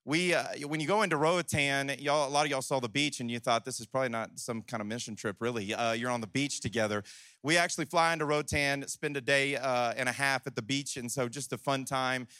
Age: 30-49